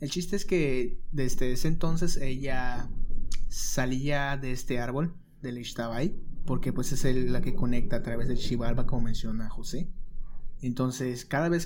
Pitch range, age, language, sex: 115-135 Hz, 20-39, English, male